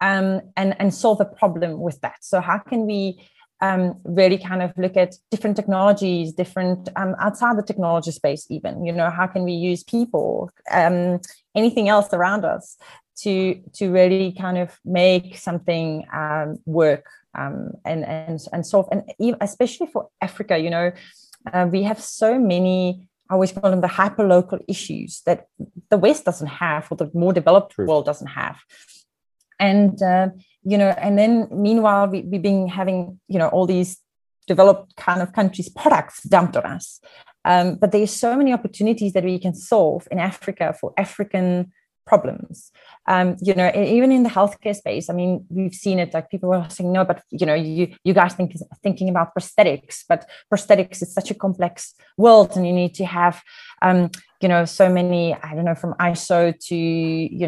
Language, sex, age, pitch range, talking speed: English, female, 30-49, 175-205 Hz, 185 wpm